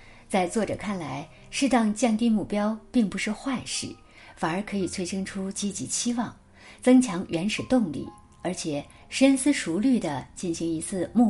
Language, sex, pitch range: Chinese, female, 165-230 Hz